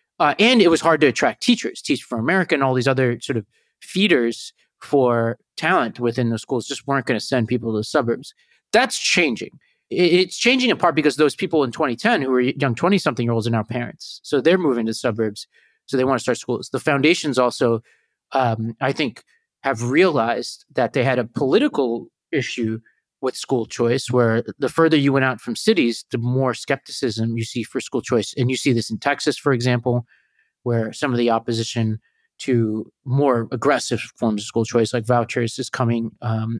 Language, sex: English, male